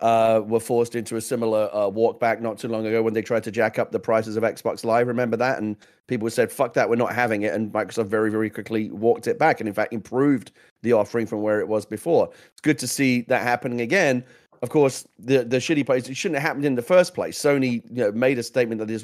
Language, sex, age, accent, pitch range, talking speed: English, male, 30-49, British, 110-140 Hz, 260 wpm